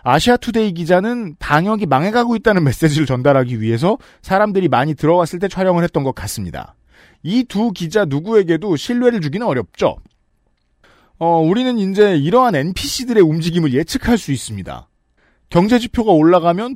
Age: 40-59